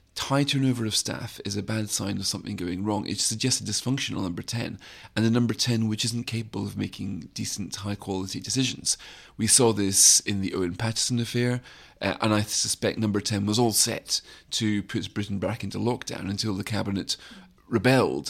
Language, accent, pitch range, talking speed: English, British, 100-115 Hz, 190 wpm